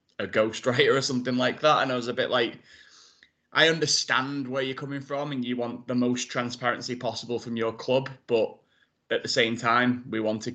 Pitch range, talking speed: 100-120 Hz, 195 wpm